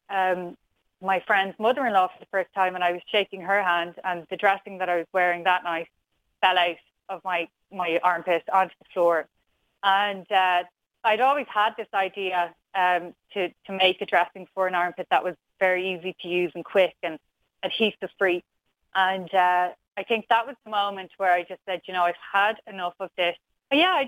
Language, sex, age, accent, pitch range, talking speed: English, female, 20-39, Irish, 175-205 Hz, 205 wpm